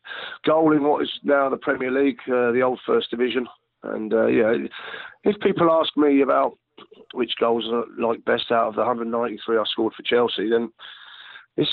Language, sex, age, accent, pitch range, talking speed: English, male, 40-59, British, 115-135 Hz, 185 wpm